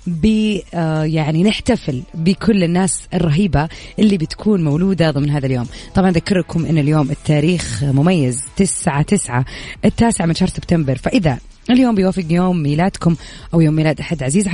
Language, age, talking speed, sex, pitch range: English, 20-39, 140 wpm, female, 155-210 Hz